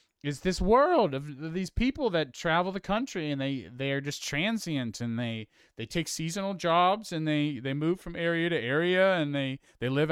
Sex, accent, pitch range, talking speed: male, American, 115-160 Hz, 200 wpm